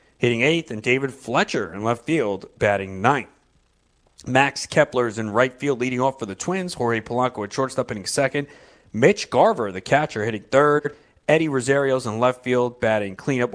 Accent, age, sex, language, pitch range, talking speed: American, 30-49, male, English, 110-145 Hz, 175 wpm